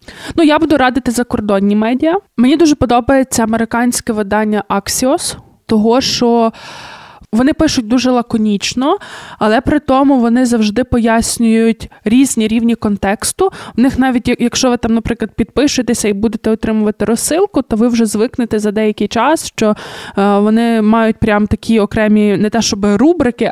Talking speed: 145 wpm